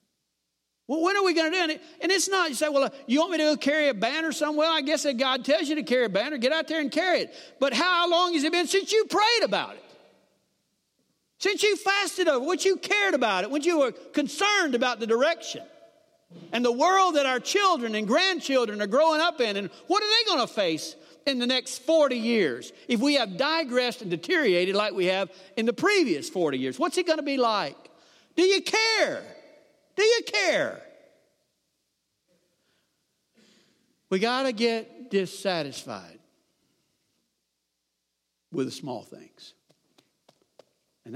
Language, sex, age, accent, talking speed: English, male, 50-69, American, 190 wpm